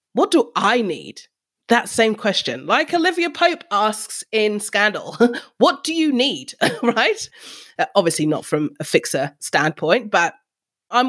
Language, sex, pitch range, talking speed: English, female, 165-240 Hz, 145 wpm